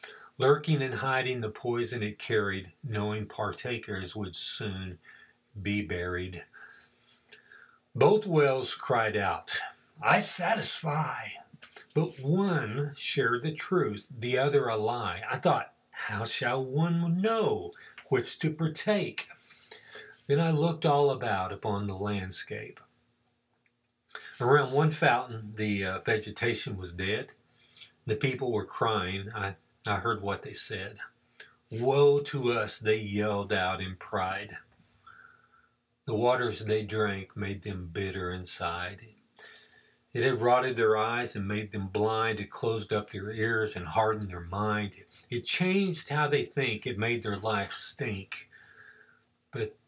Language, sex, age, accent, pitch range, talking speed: English, male, 50-69, American, 105-135 Hz, 130 wpm